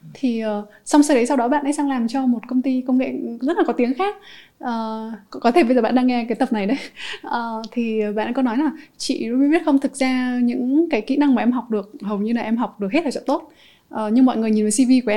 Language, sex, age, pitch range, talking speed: Vietnamese, female, 20-39, 215-270 Hz, 285 wpm